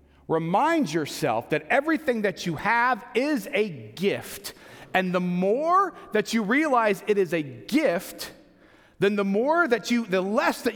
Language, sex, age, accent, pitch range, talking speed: English, male, 40-59, American, 200-265 Hz, 155 wpm